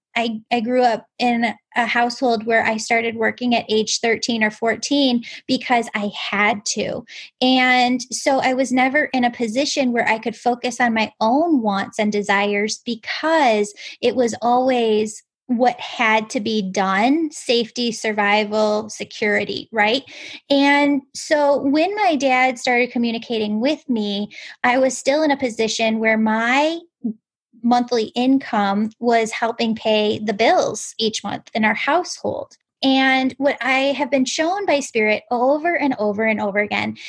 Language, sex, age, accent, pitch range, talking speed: English, female, 10-29, American, 220-270 Hz, 150 wpm